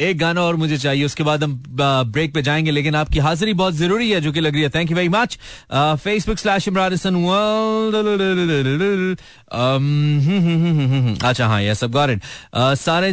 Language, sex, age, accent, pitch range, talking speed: Hindi, male, 30-49, native, 135-180 Hz, 155 wpm